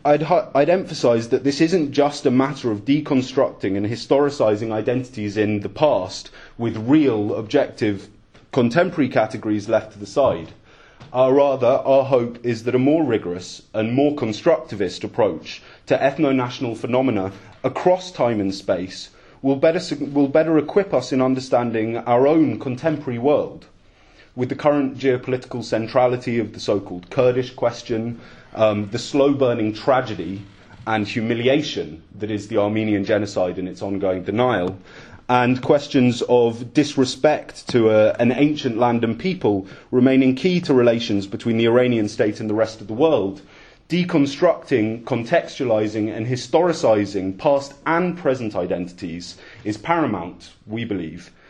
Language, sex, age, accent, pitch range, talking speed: English, male, 30-49, British, 105-135 Hz, 140 wpm